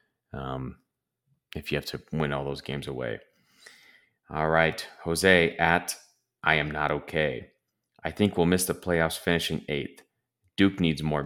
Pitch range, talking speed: 75-90 Hz, 155 wpm